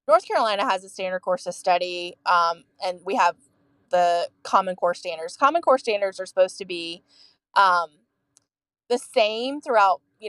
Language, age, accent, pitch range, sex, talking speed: English, 20-39, American, 180-240 Hz, female, 165 wpm